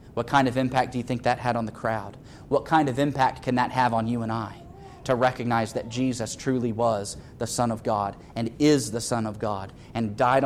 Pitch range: 115-130 Hz